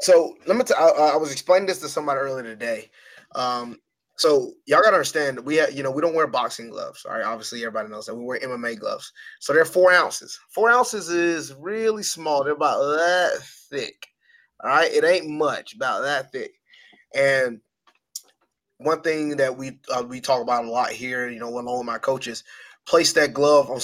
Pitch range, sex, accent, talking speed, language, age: 125-160 Hz, male, American, 205 wpm, English, 20-39